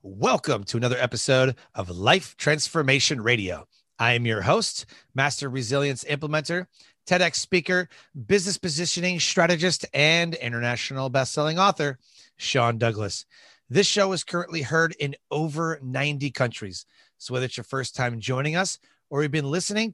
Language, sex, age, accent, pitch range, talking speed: English, male, 30-49, American, 120-165 Hz, 140 wpm